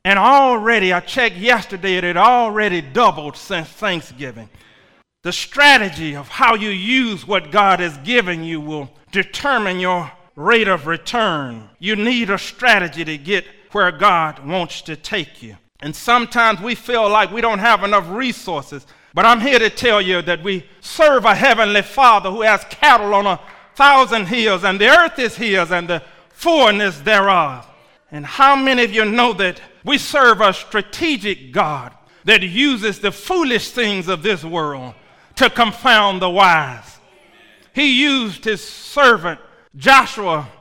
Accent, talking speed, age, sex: American, 160 wpm, 40-59, male